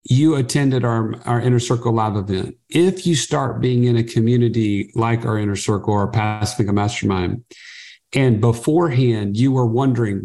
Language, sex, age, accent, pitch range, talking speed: English, male, 50-69, American, 115-135 Hz, 170 wpm